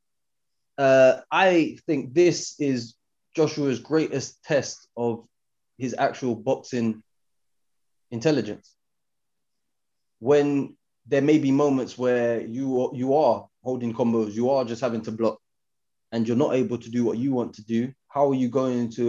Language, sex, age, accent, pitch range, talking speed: English, male, 20-39, British, 115-130 Hz, 145 wpm